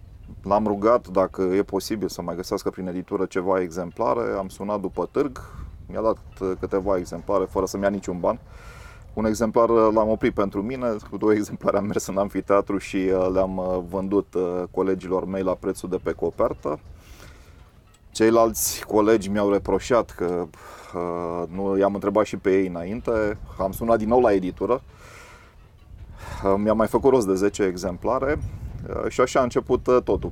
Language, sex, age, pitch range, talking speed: Romanian, male, 30-49, 90-105 Hz, 155 wpm